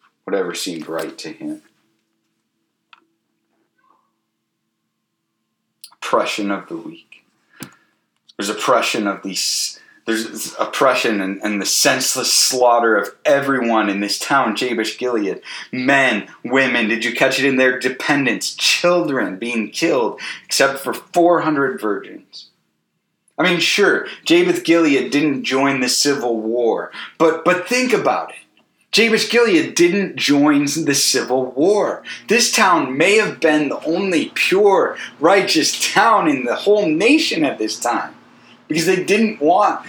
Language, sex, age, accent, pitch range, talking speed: English, male, 30-49, American, 120-195 Hz, 130 wpm